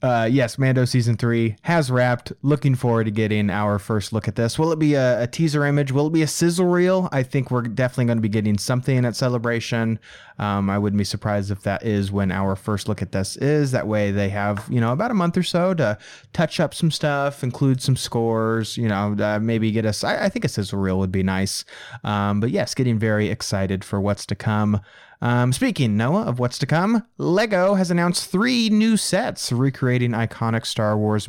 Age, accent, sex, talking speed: 30-49, American, male, 220 wpm